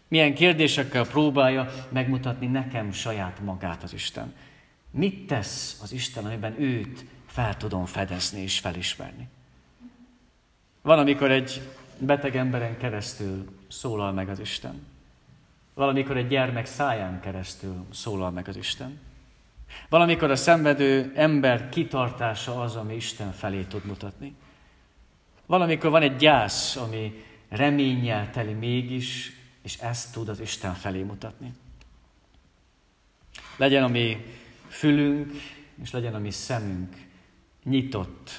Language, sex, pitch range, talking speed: Hungarian, male, 100-135 Hz, 115 wpm